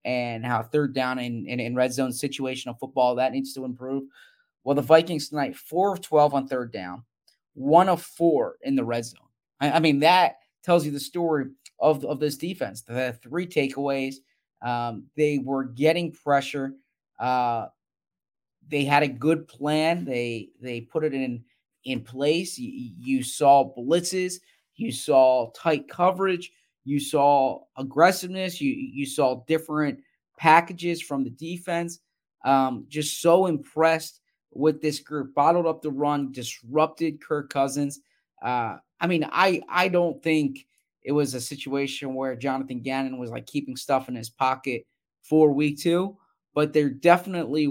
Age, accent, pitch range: 20-39, American, 135-160 Hz